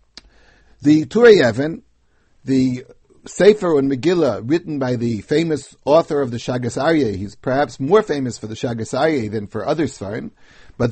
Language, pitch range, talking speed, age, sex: English, 130-175 Hz, 160 wpm, 60-79, male